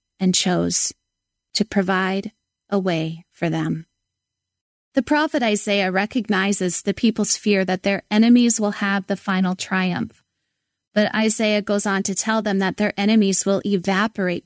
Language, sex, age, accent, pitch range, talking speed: English, female, 30-49, American, 190-240 Hz, 145 wpm